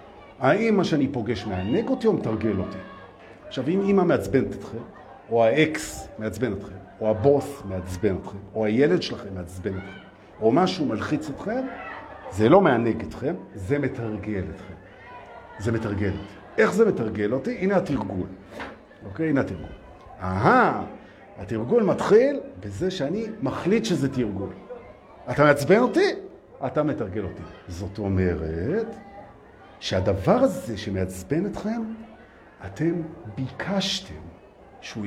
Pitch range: 100-155 Hz